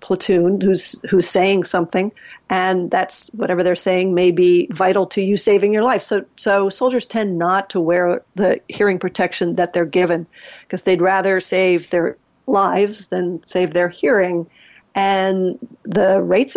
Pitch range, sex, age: 180-215 Hz, female, 50-69